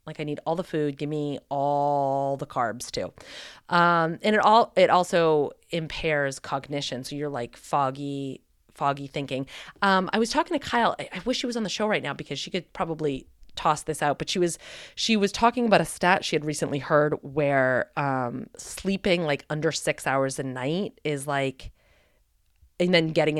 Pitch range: 140-175 Hz